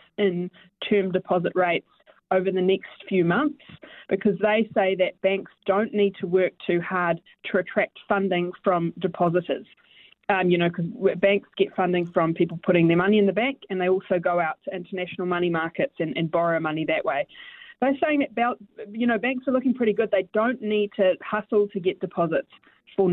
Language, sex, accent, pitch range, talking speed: English, female, Australian, 180-215 Hz, 190 wpm